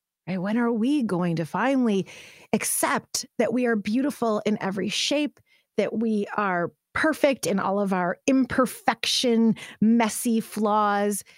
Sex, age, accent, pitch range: female, 30-49, American, 185-260 Hz